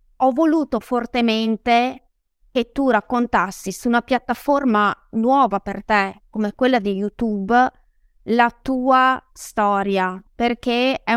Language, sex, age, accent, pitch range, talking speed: Italian, female, 20-39, native, 210-245 Hz, 115 wpm